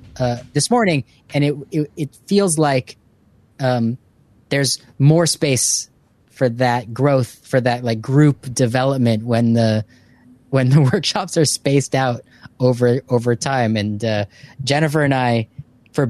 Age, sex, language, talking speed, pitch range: 20-39, male, English, 140 wpm, 115-140 Hz